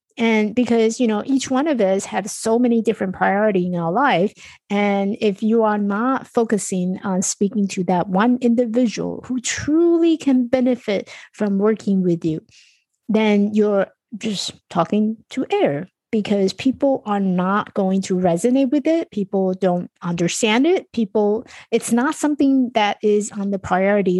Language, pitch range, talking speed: English, 190-245 Hz, 160 wpm